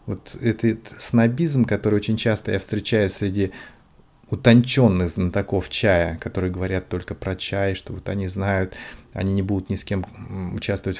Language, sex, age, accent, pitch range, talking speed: Russian, male, 30-49, native, 100-125 Hz, 155 wpm